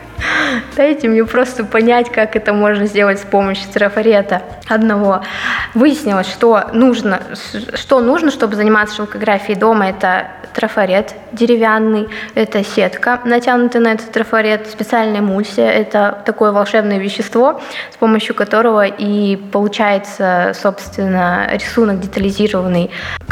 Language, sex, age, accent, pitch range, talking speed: Russian, female, 20-39, native, 205-235 Hz, 115 wpm